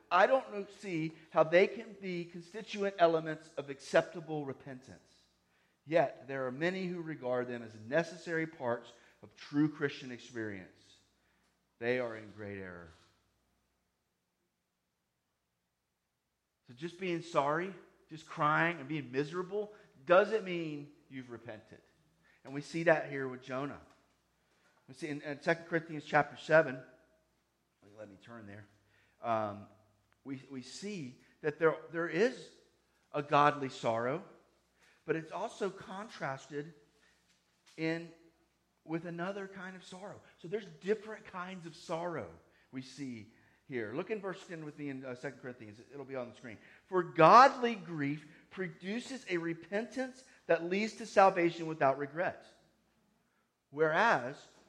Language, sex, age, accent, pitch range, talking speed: English, male, 40-59, American, 125-175 Hz, 130 wpm